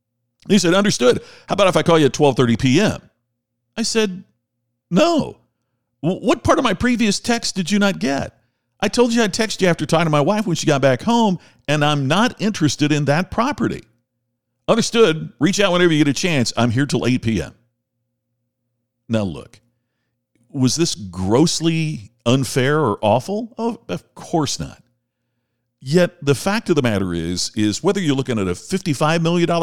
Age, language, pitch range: 50-69, English, 120-170 Hz